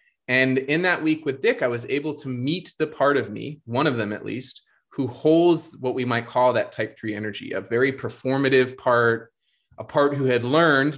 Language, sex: English, male